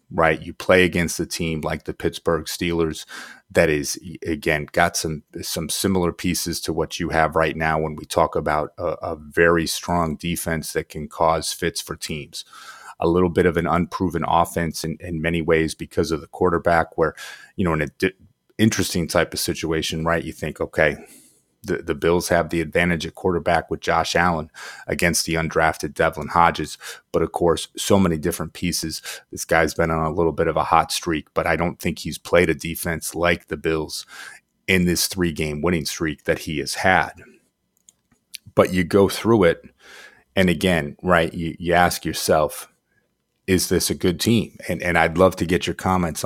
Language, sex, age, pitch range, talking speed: English, male, 30-49, 80-90 Hz, 190 wpm